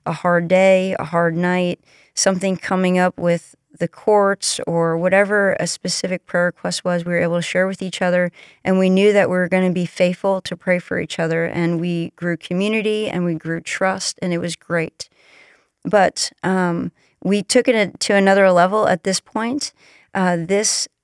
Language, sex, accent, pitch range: English, female, American, 170-190 Hz